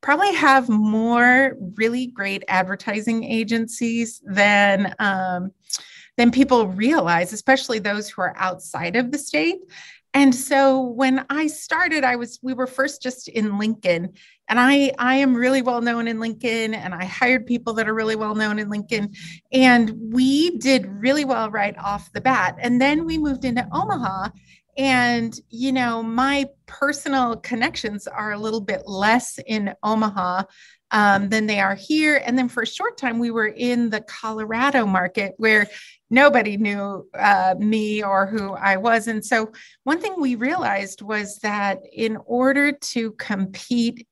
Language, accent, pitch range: English, American, 200-260 Hz